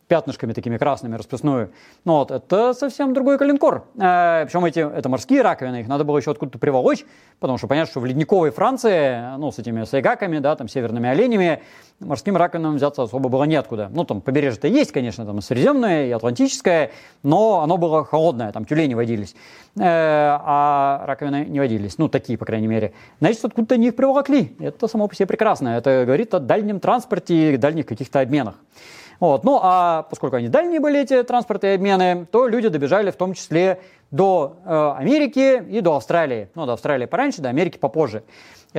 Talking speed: 185 wpm